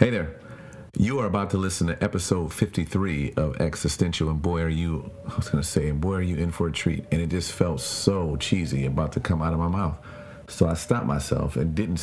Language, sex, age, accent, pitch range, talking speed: English, male, 40-59, American, 85-105 Hz, 240 wpm